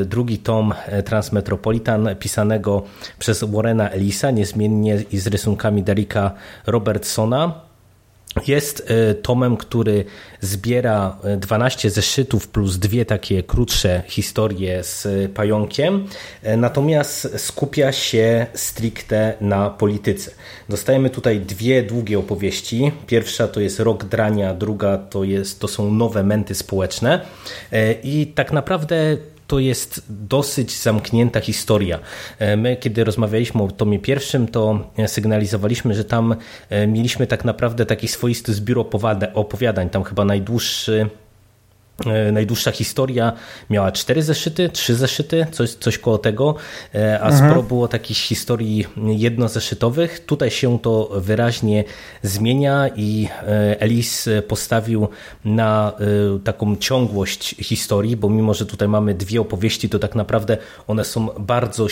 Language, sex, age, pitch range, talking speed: Polish, male, 30-49, 105-120 Hz, 115 wpm